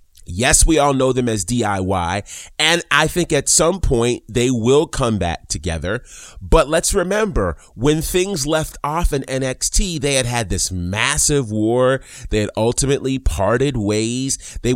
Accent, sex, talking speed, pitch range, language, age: American, male, 160 wpm, 100-140 Hz, English, 30-49